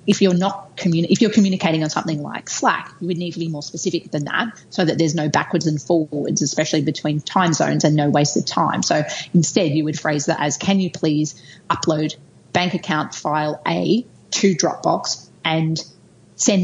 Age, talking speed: 30-49, 195 wpm